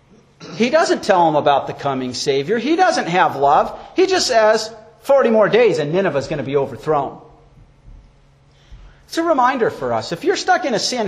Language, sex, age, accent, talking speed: English, male, 50-69, American, 195 wpm